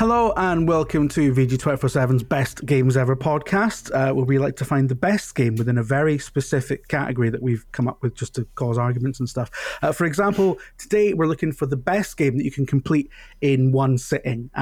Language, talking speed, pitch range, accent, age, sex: English, 220 wpm, 125-150 Hz, British, 30-49, male